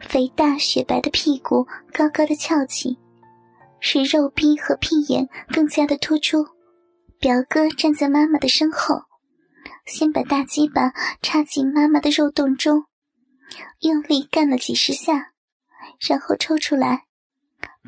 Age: 10-29